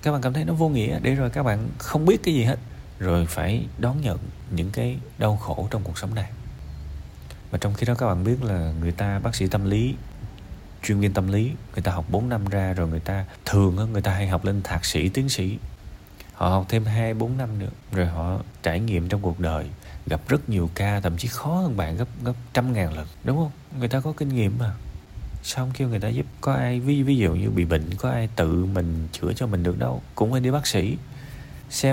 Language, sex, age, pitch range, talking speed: Vietnamese, male, 20-39, 95-130 Hz, 240 wpm